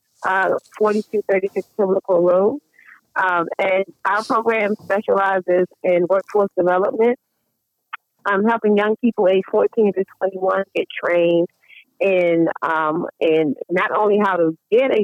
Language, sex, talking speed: English, female, 130 wpm